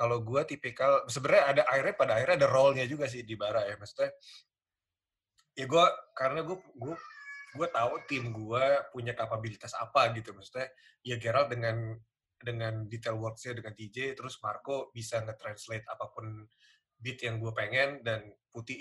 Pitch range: 110-130 Hz